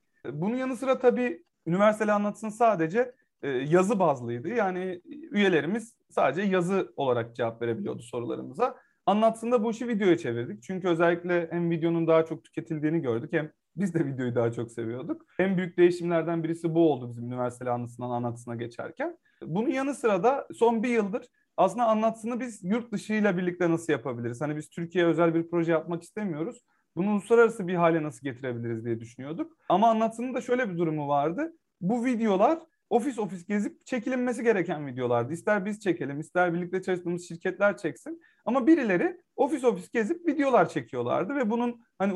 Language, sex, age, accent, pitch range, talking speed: Turkish, male, 40-59, native, 155-235 Hz, 160 wpm